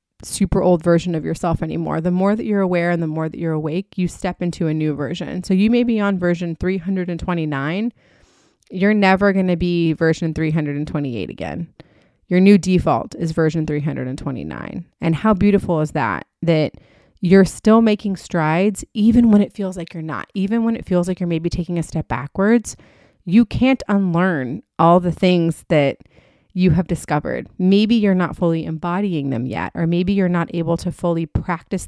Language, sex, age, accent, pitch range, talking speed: English, female, 30-49, American, 155-190 Hz, 185 wpm